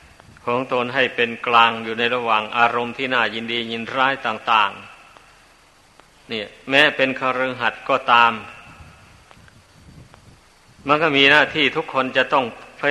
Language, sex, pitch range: Thai, male, 120-135 Hz